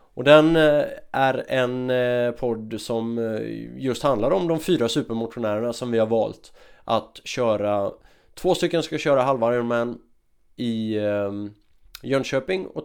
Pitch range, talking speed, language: 115-140 Hz, 125 wpm, Swedish